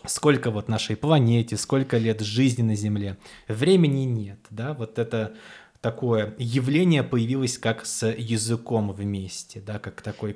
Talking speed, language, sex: 140 wpm, Russian, male